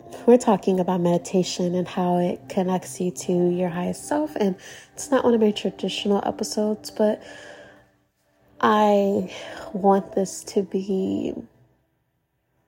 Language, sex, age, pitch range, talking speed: English, female, 20-39, 185-215 Hz, 135 wpm